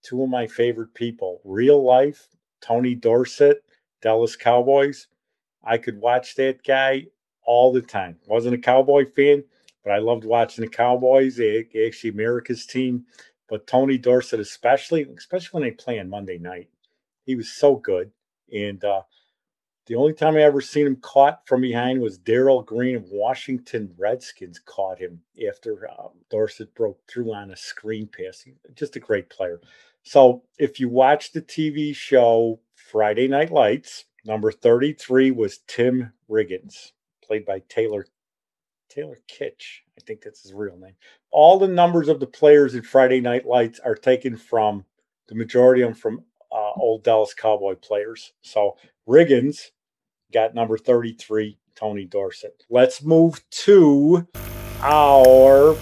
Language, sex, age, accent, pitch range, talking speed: English, male, 50-69, American, 115-150 Hz, 150 wpm